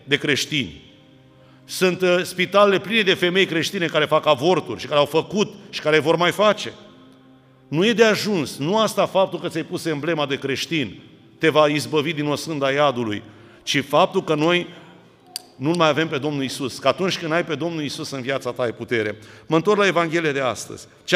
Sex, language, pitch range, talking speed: male, Romanian, 145-180 Hz, 195 wpm